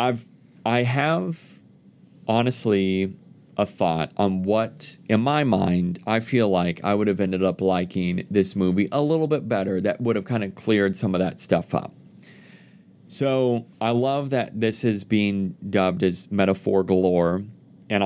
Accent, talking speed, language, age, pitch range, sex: American, 160 wpm, English, 30-49, 95-115 Hz, male